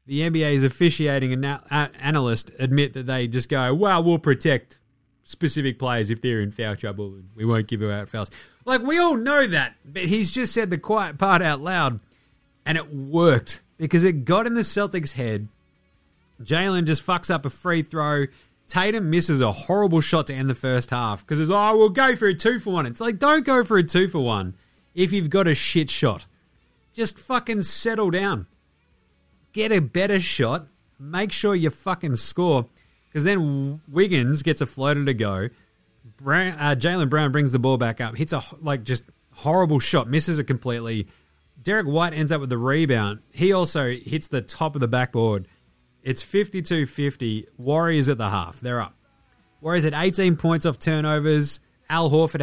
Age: 30-49